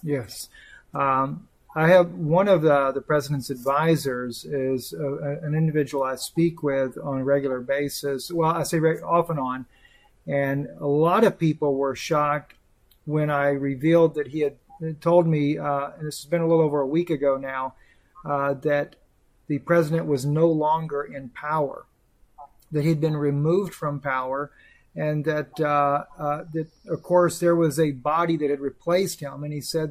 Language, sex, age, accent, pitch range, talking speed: English, male, 40-59, American, 145-170 Hz, 180 wpm